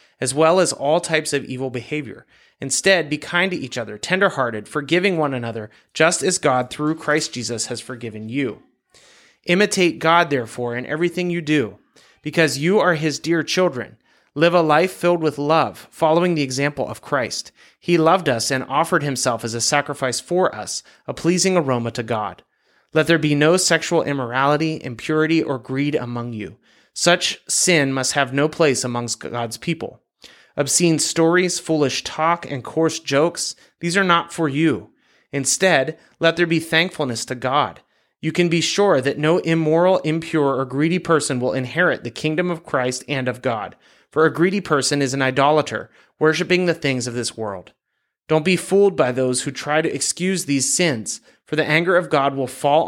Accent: American